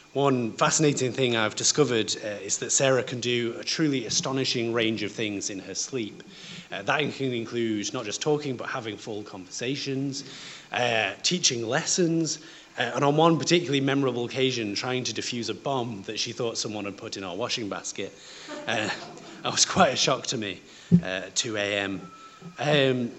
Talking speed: 180 wpm